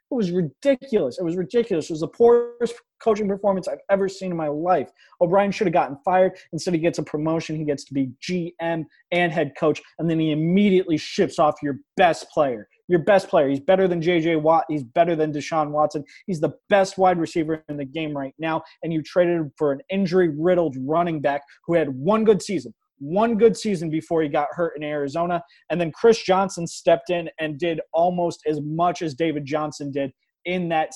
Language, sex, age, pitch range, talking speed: English, male, 20-39, 145-180 Hz, 210 wpm